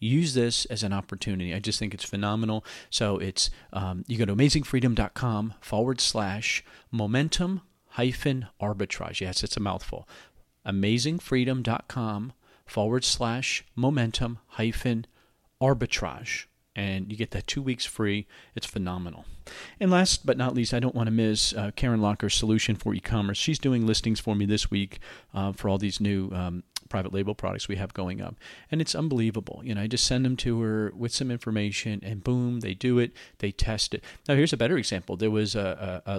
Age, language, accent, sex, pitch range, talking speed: 40-59, English, American, male, 100-125 Hz, 180 wpm